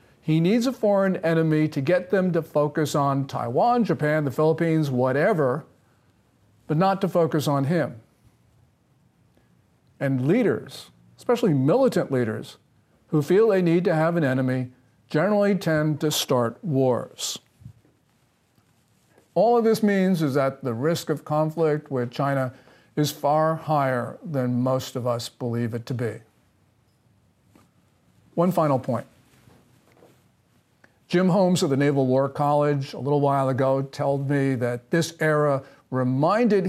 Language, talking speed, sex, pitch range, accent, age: English, 135 wpm, male, 130-170 Hz, American, 50-69